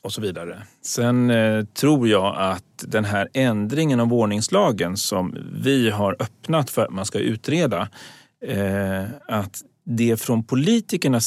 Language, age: Swedish, 40-59